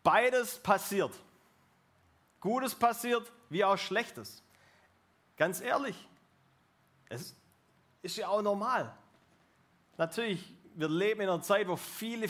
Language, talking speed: German, 105 wpm